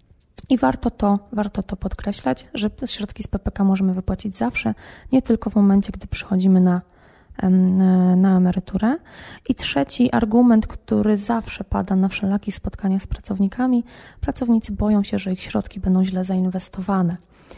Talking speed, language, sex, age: 145 wpm, Polish, female, 20-39